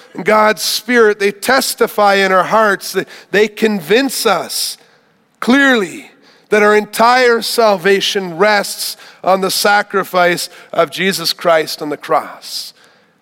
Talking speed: 115 wpm